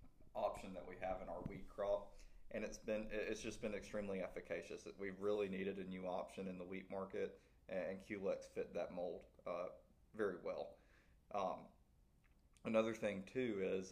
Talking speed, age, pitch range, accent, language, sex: 170 wpm, 20-39, 95-105 Hz, American, English, male